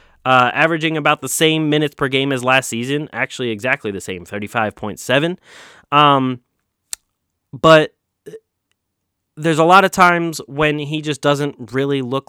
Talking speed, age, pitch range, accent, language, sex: 140 wpm, 20-39, 120-155 Hz, American, English, male